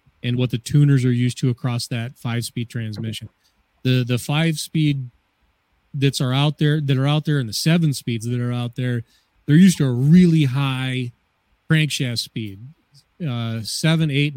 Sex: male